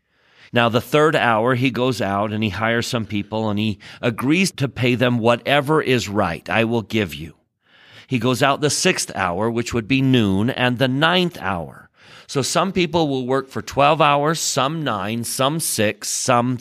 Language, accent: English, American